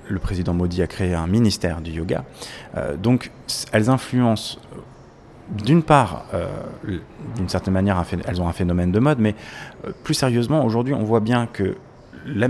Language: French